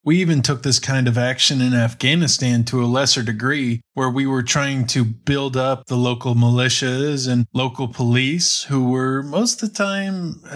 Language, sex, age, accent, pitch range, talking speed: English, male, 20-39, American, 125-150 Hz, 180 wpm